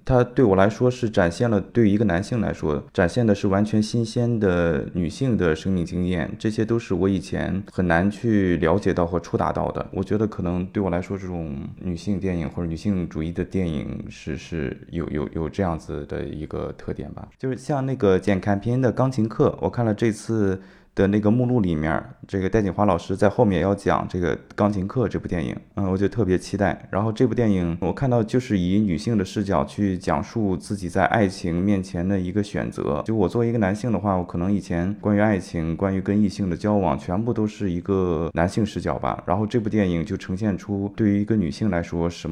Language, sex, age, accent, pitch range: Chinese, male, 20-39, native, 85-105 Hz